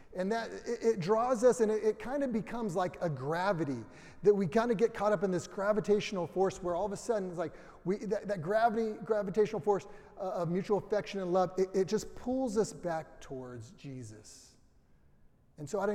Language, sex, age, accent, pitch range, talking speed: English, male, 30-49, American, 140-195 Hz, 205 wpm